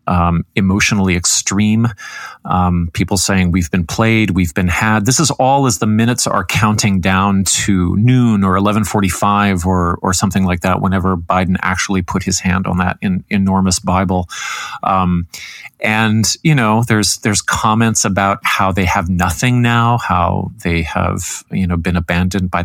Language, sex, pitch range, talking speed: English, male, 95-120 Hz, 165 wpm